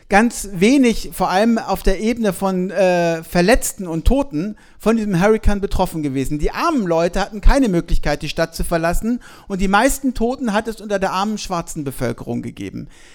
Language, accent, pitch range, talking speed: German, German, 170-225 Hz, 180 wpm